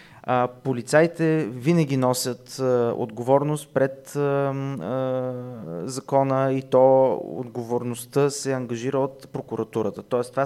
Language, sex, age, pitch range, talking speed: Bulgarian, male, 30-49, 120-145 Hz, 85 wpm